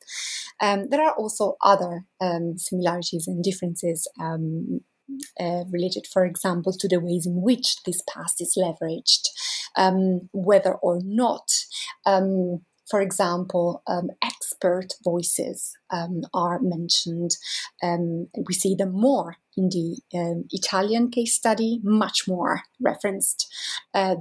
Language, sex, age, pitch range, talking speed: English, female, 30-49, 175-235 Hz, 125 wpm